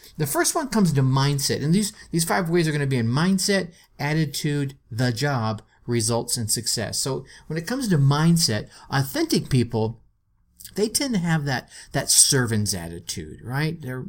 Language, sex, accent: English, male, American